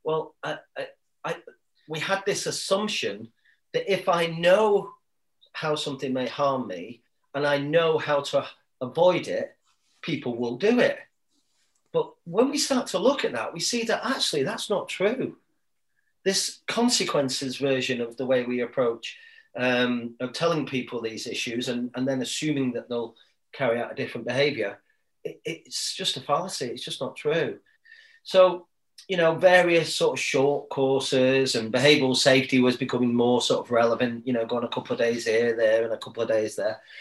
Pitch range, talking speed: 125-170 Hz, 170 wpm